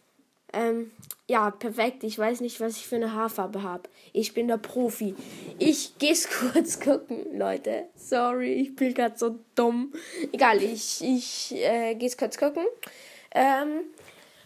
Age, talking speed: 10-29, 150 wpm